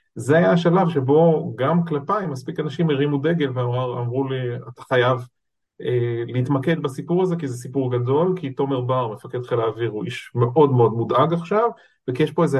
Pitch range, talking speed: 120-150 Hz, 185 wpm